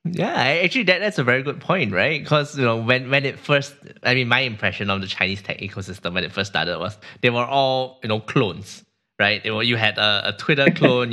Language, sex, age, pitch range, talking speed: English, male, 20-39, 100-125 Hz, 235 wpm